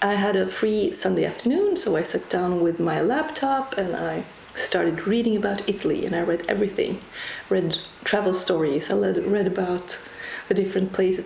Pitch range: 190-240 Hz